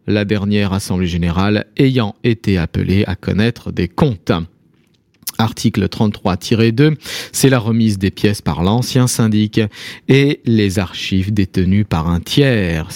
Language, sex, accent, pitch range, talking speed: French, male, French, 100-140 Hz, 130 wpm